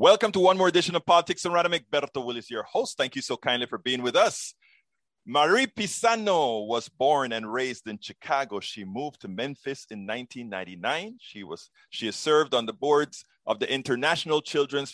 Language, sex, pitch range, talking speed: English, male, 115-165 Hz, 190 wpm